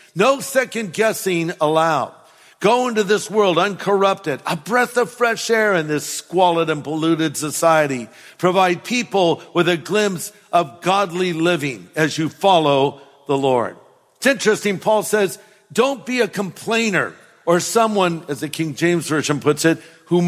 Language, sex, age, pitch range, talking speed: English, male, 50-69, 155-195 Hz, 150 wpm